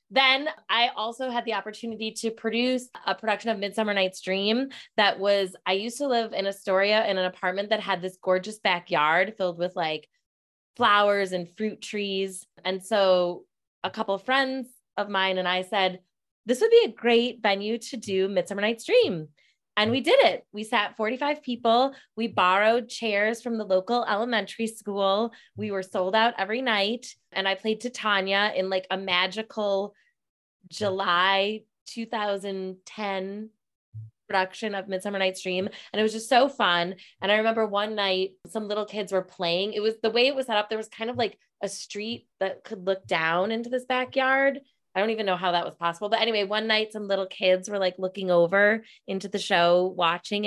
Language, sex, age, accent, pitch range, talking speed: English, female, 20-39, American, 180-220 Hz, 190 wpm